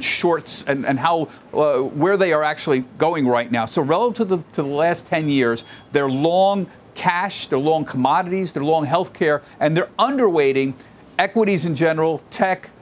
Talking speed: 175 wpm